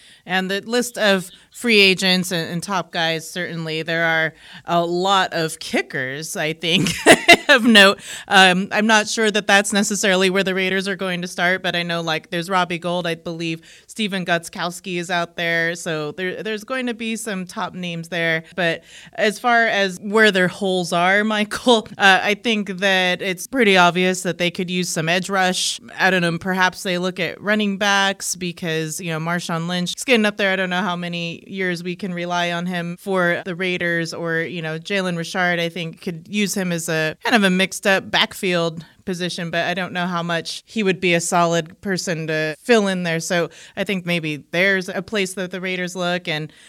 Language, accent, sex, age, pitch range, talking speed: English, American, female, 30-49, 170-195 Hz, 205 wpm